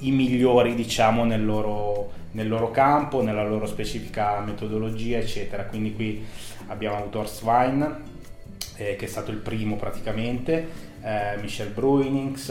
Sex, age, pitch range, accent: male, 20-39, 105-120 Hz, native